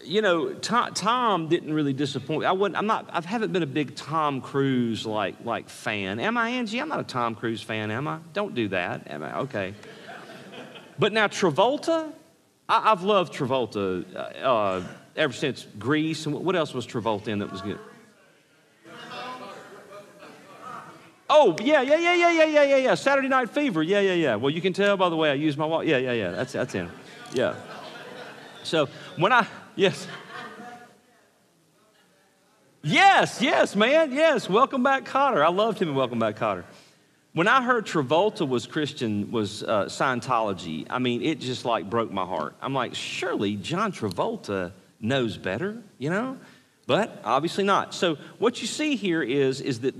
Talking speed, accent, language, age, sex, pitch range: 175 wpm, American, English, 40-59, male, 125-215 Hz